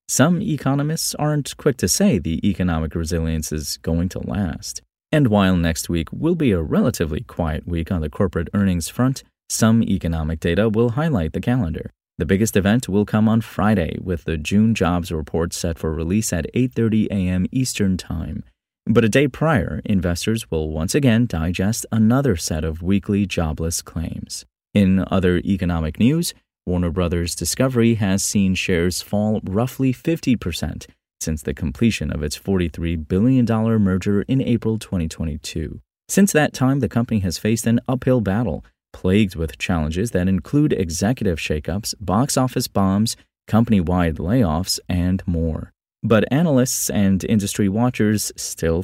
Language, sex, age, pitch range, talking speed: English, male, 30-49, 85-115 Hz, 150 wpm